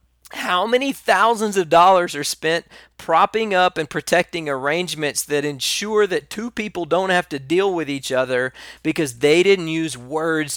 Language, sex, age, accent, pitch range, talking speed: English, male, 40-59, American, 115-160 Hz, 165 wpm